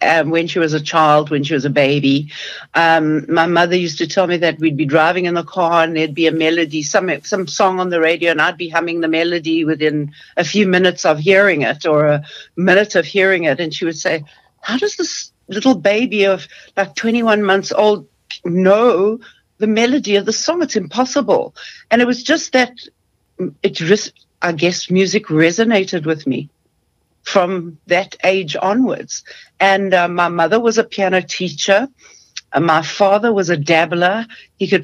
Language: English